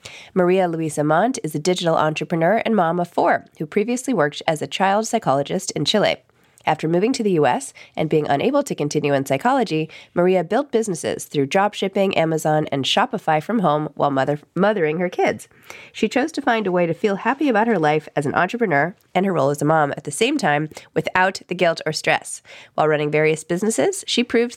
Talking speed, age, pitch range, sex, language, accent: 200 wpm, 20-39, 155-205 Hz, female, English, American